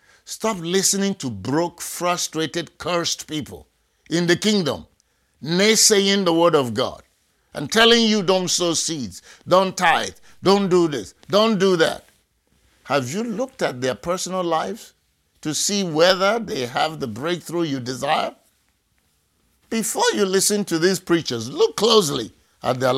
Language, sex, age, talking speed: English, male, 50-69, 145 wpm